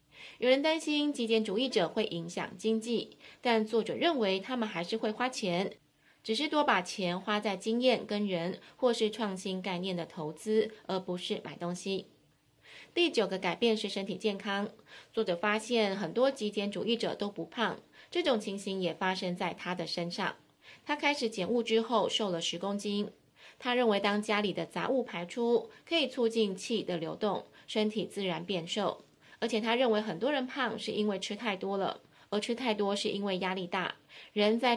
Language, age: Chinese, 20-39